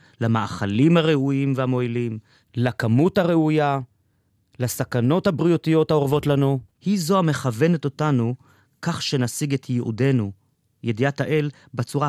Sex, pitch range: male, 125-205 Hz